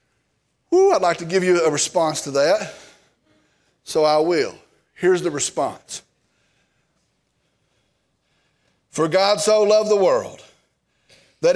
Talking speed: 115 wpm